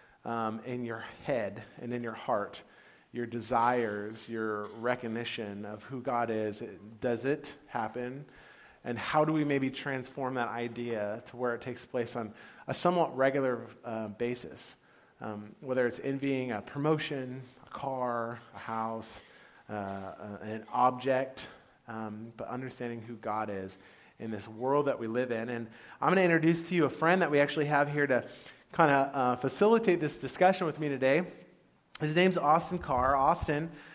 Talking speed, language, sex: 165 wpm, English, male